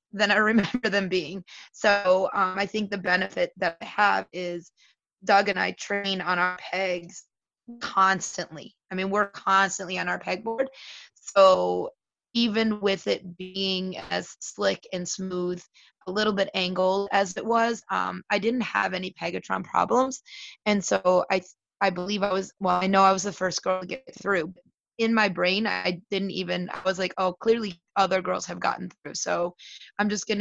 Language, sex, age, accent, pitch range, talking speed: English, female, 20-39, American, 180-205 Hz, 180 wpm